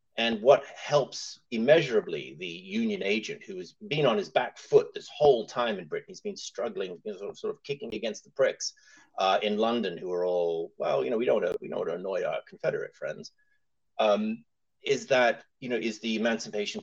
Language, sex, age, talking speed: English, male, 30-49, 220 wpm